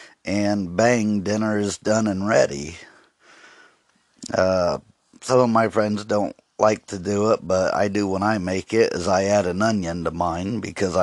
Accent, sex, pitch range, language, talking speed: American, male, 95-110 Hz, English, 175 wpm